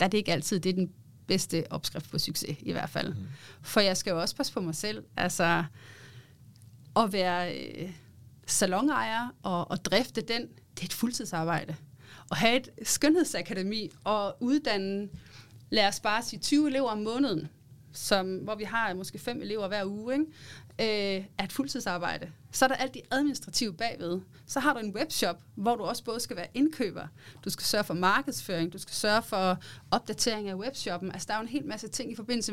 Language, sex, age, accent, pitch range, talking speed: Danish, female, 30-49, native, 165-230 Hz, 190 wpm